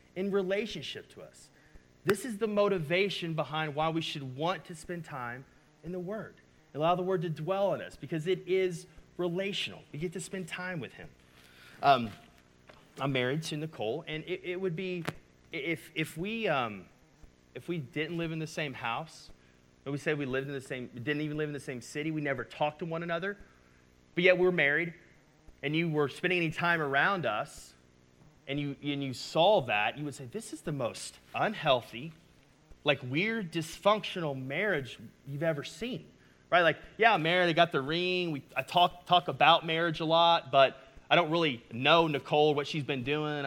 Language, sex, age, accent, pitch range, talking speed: English, male, 30-49, American, 145-180 Hz, 190 wpm